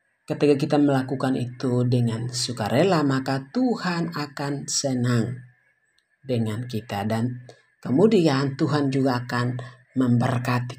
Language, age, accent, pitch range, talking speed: Indonesian, 50-69, native, 125-190 Hz, 100 wpm